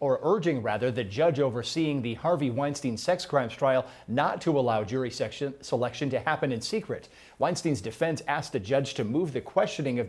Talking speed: 190 wpm